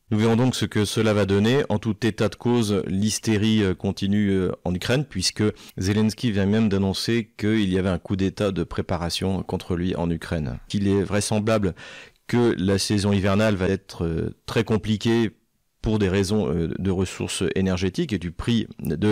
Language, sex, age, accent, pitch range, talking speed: French, male, 40-59, French, 95-110 Hz, 175 wpm